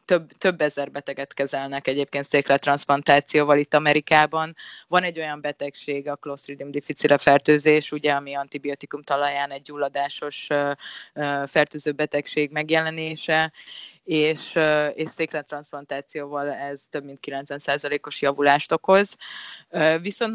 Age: 20-39